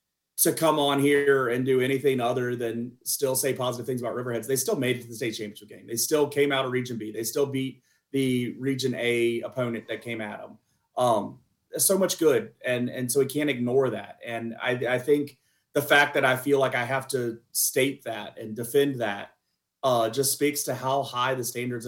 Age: 30-49